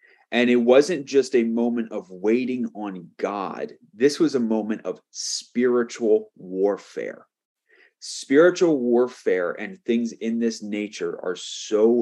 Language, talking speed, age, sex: English, 130 wpm, 30-49, male